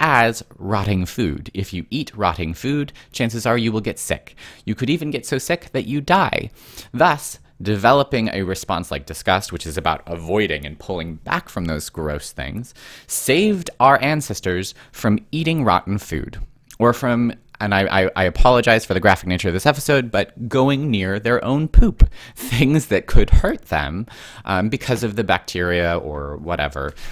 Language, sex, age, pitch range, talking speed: English, male, 30-49, 90-125 Hz, 175 wpm